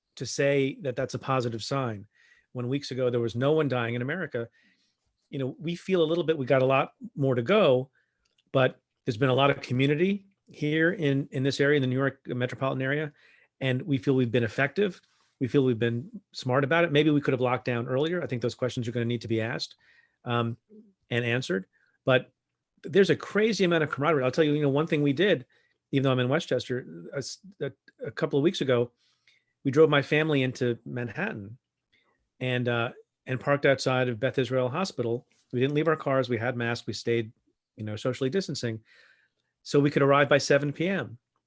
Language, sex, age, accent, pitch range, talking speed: English, male, 40-59, American, 125-145 Hz, 210 wpm